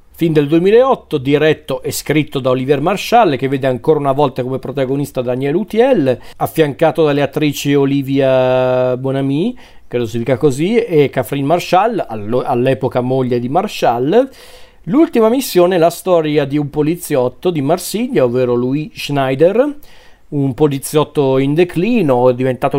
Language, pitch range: Italian, 130-150 Hz